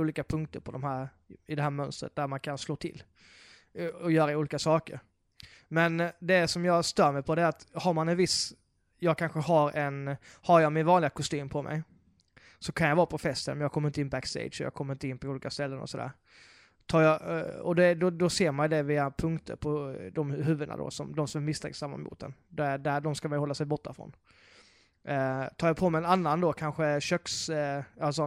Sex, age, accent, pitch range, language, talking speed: male, 20-39, native, 140-160 Hz, Swedish, 210 wpm